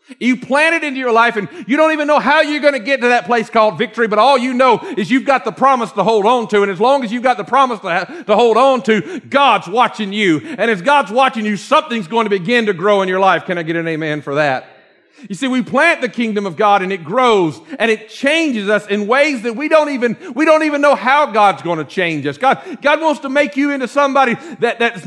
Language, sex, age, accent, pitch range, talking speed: English, male, 40-59, American, 190-270 Hz, 265 wpm